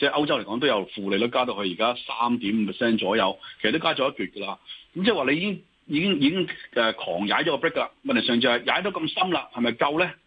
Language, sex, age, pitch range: Chinese, male, 30-49, 110-160 Hz